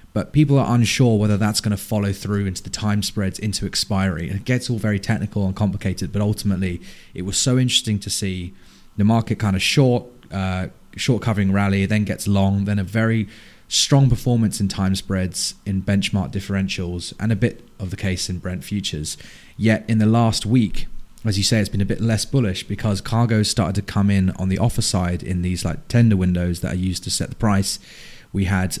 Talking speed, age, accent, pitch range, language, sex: 210 wpm, 20-39, British, 95-110 Hz, English, male